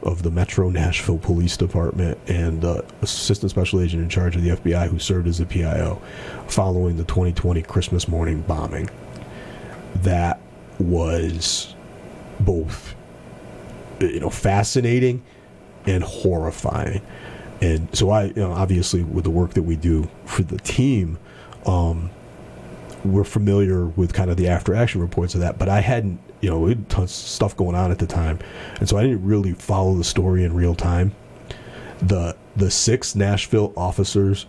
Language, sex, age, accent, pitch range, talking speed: English, male, 40-59, American, 85-100 Hz, 155 wpm